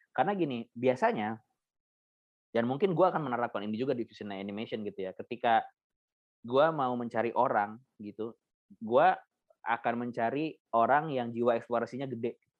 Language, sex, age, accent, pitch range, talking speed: Indonesian, male, 20-39, native, 110-130 Hz, 140 wpm